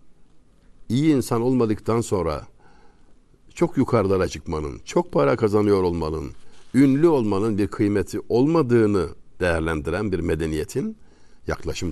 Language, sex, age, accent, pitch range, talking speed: Turkish, male, 60-79, native, 95-120 Hz, 100 wpm